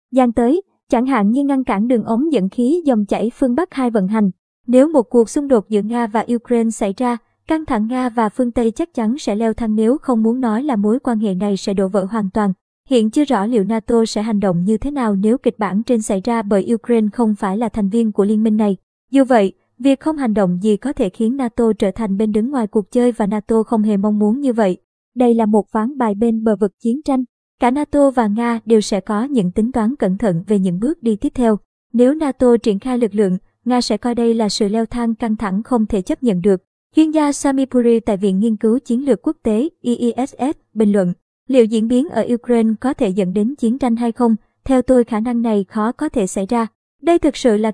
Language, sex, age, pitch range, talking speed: Vietnamese, male, 20-39, 215-250 Hz, 250 wpm